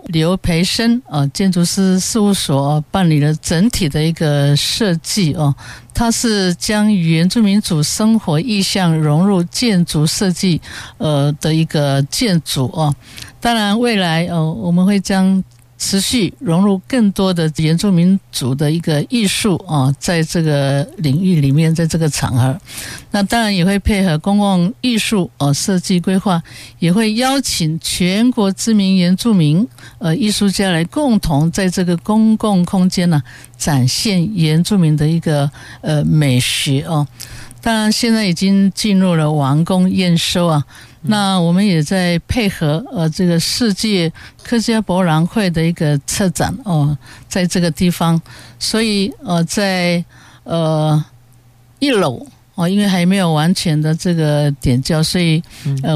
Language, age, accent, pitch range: Chinese, 60-79, American, 150-195 Hz